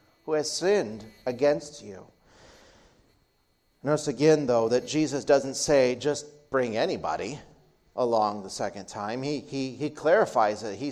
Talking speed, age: 135 wpm, 40-59